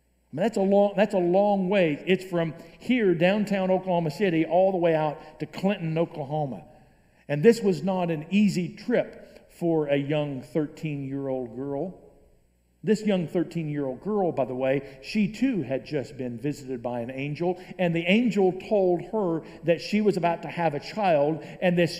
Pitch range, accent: 145-185 Hz, American